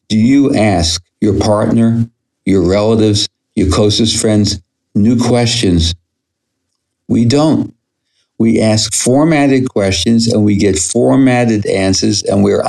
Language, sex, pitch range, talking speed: English, male, 100-125 Hz, 120 wpm